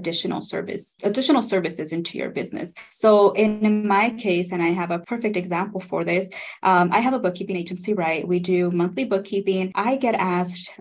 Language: English